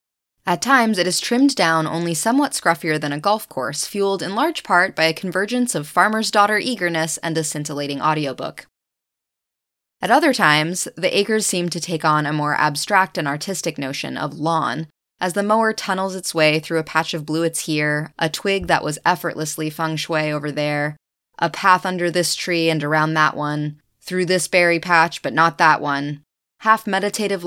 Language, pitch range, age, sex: English, 150-185 Hz, 20-39, female